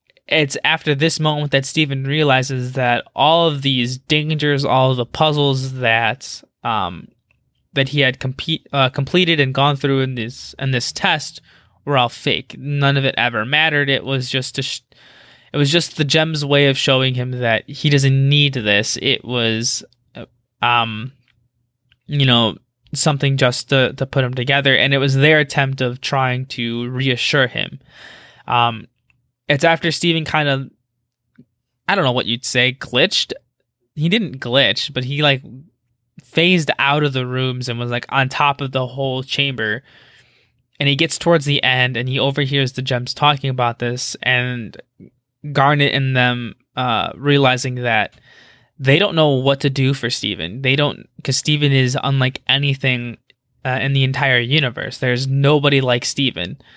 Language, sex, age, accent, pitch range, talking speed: English, male, 20-39, American, 125-145 Hz, 170 wpm